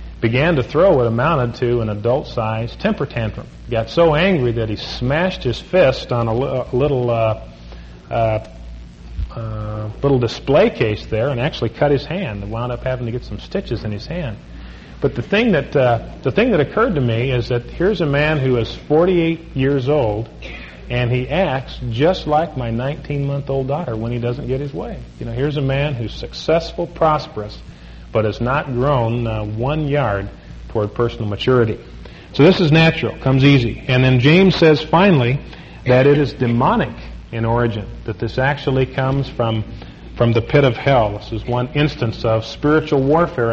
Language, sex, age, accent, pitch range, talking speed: English, male, 40-59, American, 110-140 Hz, 185 wpm